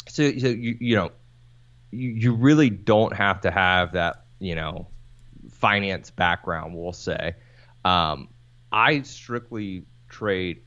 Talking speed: 130 wpm